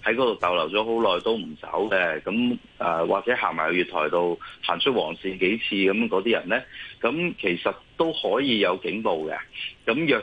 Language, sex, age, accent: Chinese, male, 30-49, native